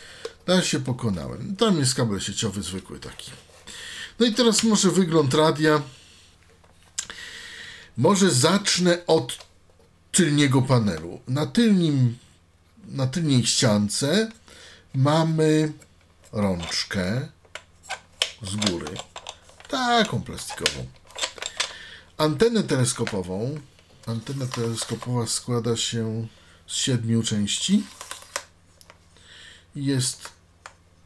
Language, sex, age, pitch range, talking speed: Polish, male, 50-69, 100-155 Hz, 80 wpm